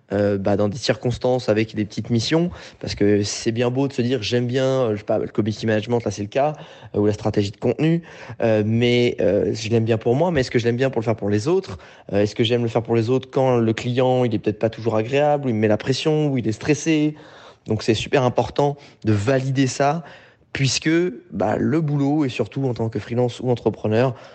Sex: male